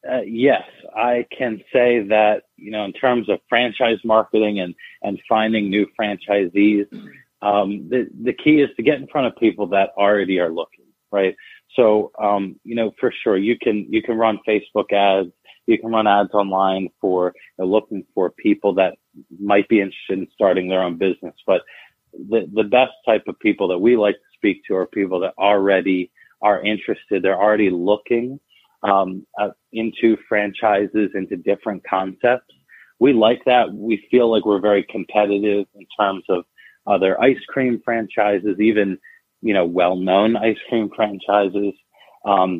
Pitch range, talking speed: 95-110 Hz, 170 wpm